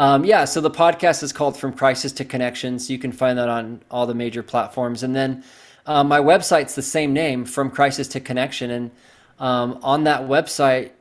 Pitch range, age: 120-140 Hz, 20-39